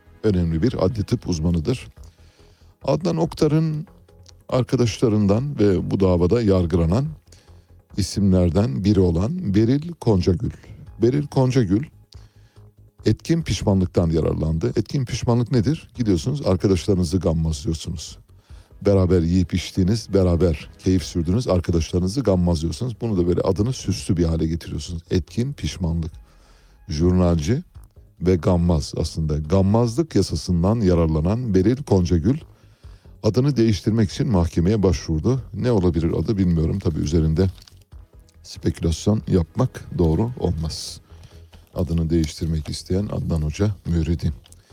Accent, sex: native, male